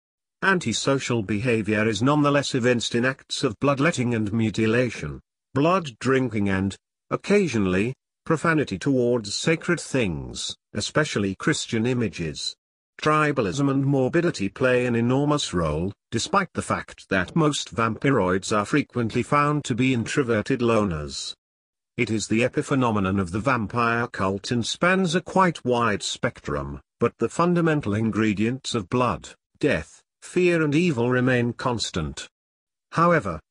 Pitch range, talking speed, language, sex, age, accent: 110-145 Hz, 125 wpm, English, male, 50-69, British